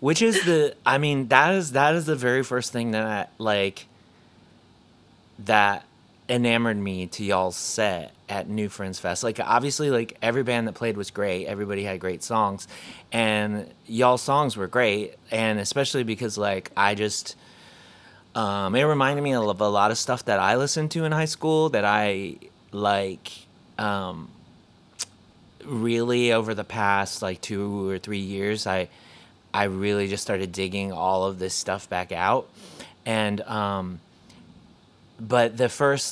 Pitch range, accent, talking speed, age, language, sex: 100-125 Hz, American, 160 wpm, 30-49, English, male